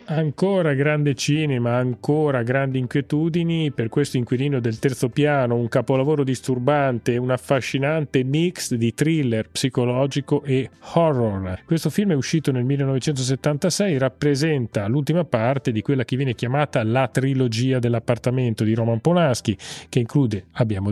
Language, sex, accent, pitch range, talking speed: Italian, male, native, 120-155 Hz, 135 wpm